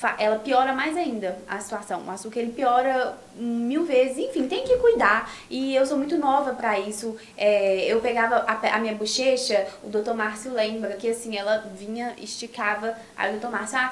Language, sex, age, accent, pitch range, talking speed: Portuguese, female, 10-29, Brazilian, 210-250 Hz, 190 wpm